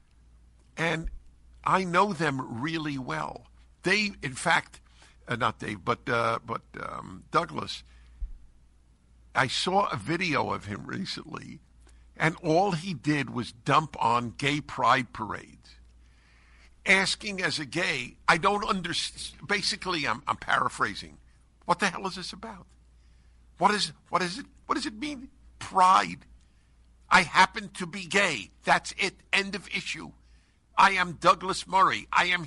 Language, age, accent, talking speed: English, 60-79, American, 140 wpm